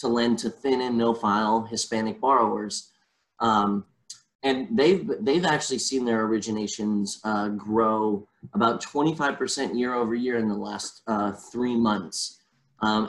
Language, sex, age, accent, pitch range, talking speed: English, male, 20-39, American, 110-125 Hz, 140 wpm